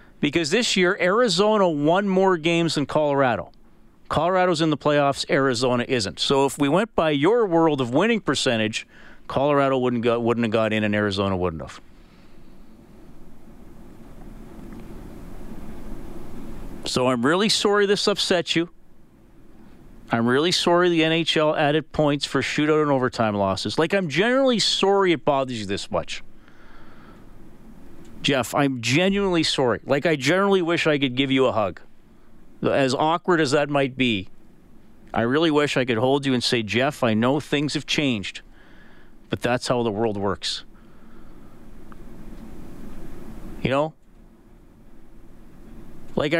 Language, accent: English, American